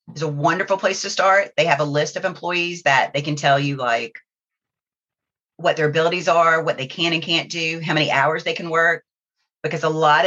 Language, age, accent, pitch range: English, 30-49, American, 145-180 Hz